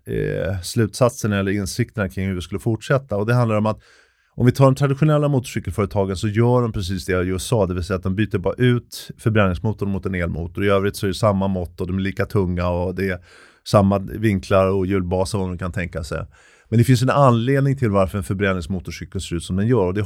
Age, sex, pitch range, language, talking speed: 30-49, male, 95-120 Hz, Swedish, 240 wpm